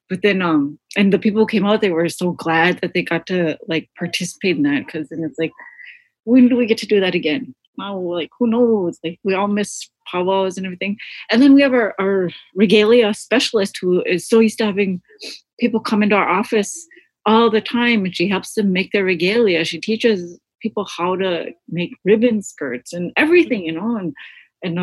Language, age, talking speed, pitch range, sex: English, 30-49, 210 wpm, 170-220 Hz, female